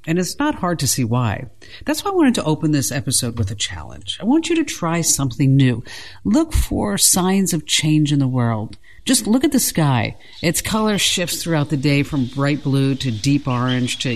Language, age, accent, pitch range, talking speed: English, 50-69, American, 130-195 Hz, 215 wpm